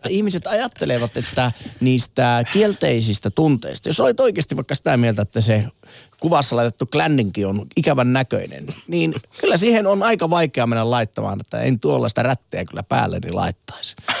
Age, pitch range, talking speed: 30-49, 115-160 Hz, 150 wpm